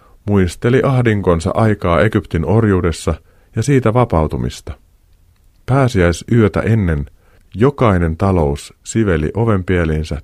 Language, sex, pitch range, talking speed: Finnish, male, 85-115 Hz, 80 wpm